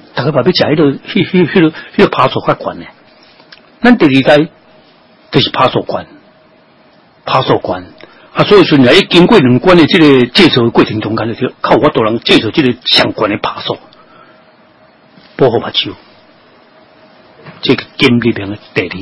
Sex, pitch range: male, 110-150 Hz